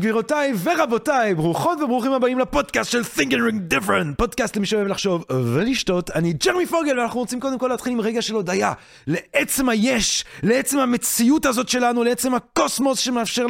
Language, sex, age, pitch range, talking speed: Hebrew, male, 30-49, 195-275 Hz, 160 wpm